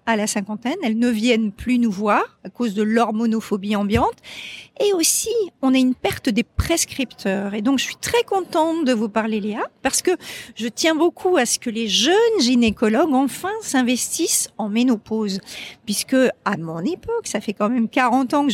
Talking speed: 190 wpm